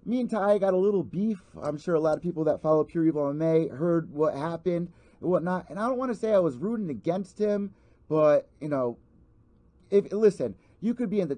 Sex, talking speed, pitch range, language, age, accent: male, 230 wpm, 145-195 Hz, English, 30-49, American